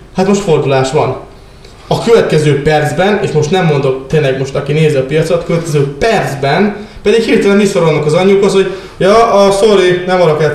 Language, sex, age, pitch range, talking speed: Hungarian, male, 20-39, 140-195 Hz, 170 wpm